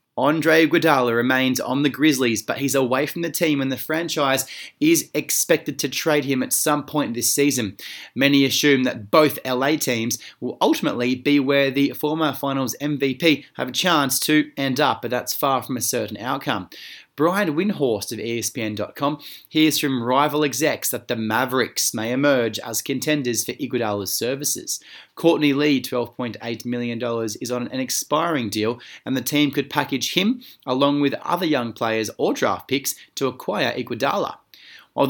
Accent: Australian